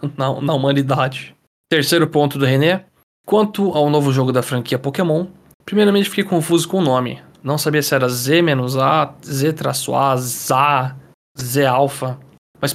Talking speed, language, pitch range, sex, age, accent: 140 wpm, Portuguese, 135-170 Hz, male, 20-39, Brazilian